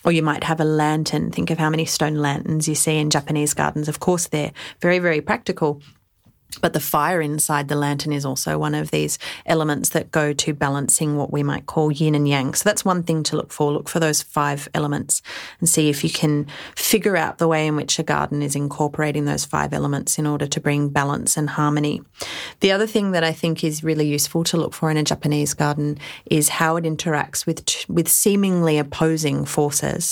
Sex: female